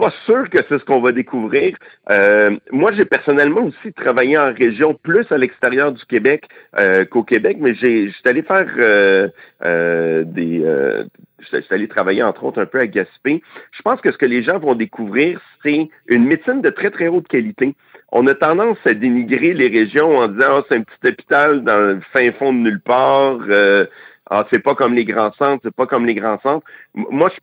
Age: 50-69